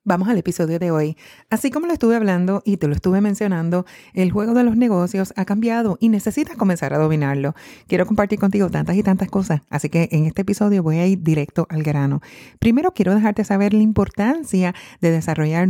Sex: female